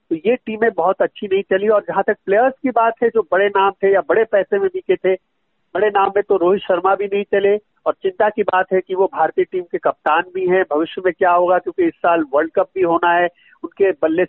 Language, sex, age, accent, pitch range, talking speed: Hindi, male, 50-69, native, 175-215 Hz, 250 wpm